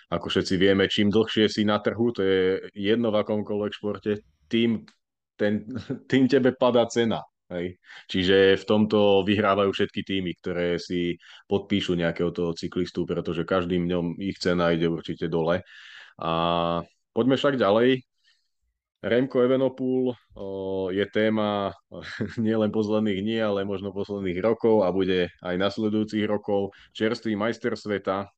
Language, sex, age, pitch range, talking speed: Slovak, male, 20-39, 90-105 Hz, 135 wpm